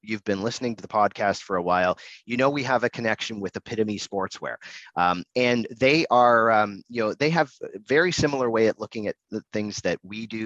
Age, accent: 30-49, American